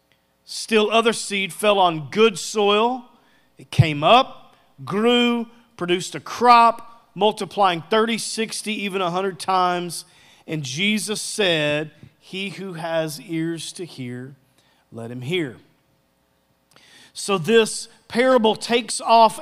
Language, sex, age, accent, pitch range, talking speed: English, male, 40-59, American, 170-225 Hz, 115 wpm